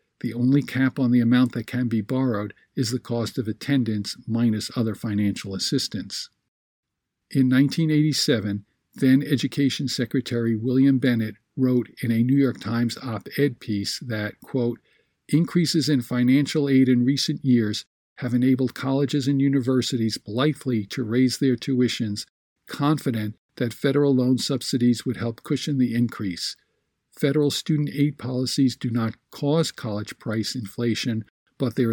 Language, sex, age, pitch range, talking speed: English, male, 50-69, 115-140 Hz, 140 wpm